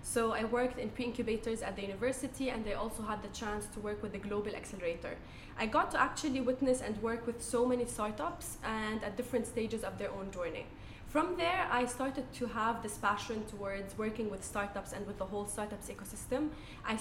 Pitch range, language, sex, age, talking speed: 210-250 Hz, English, female, 20-39, 205 wpm